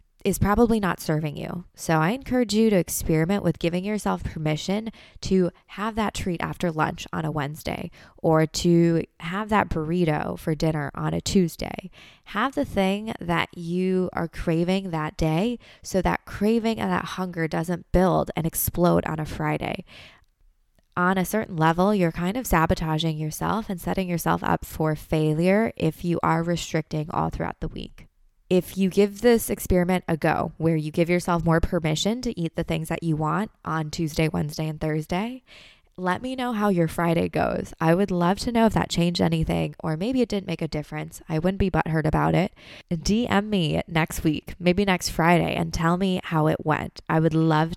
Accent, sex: American, female